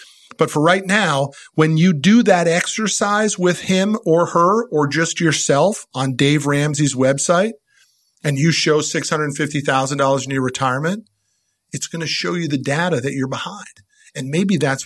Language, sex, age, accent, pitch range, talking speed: English, male, 50-69, American, 145-195 Hz, 160 wpm